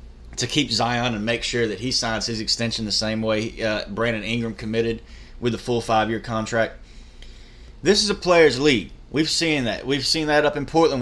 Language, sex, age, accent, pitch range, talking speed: English, male, 30-49, American, 105-125 Hz, 200 wpm